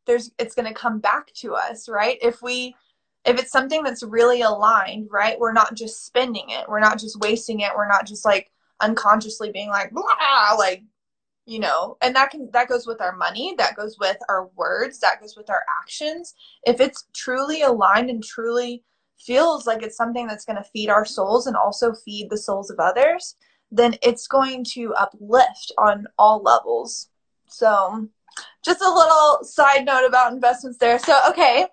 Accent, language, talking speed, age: American, English, 185 wpm, 20-39